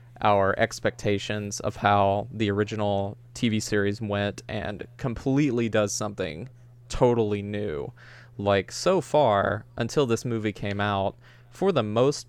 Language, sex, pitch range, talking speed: English, male, 105-140 Hz, 125 wpm